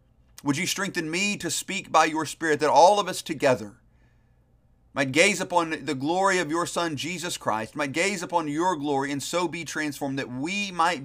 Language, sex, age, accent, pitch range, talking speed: English, male, 50-69, American, 145-195 Hz, 195 wpm